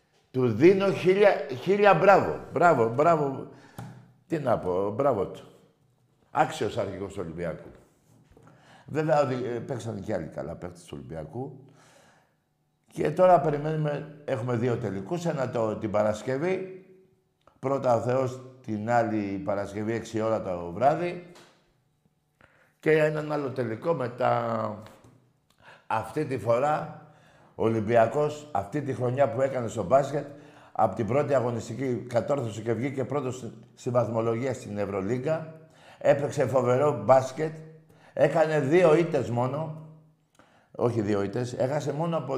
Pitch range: 115-150 Hz